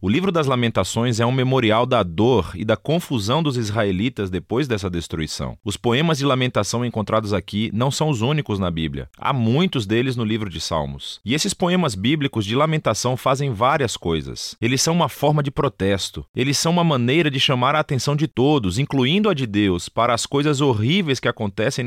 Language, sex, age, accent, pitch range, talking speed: Portuguese, male, 30-49, Brazilian, 110-155 Hz, 195 wpm